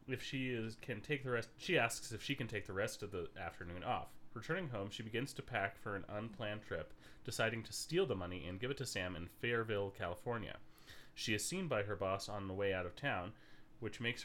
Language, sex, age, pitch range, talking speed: English, male, 30-49, 100-125 Hz, 235 wpm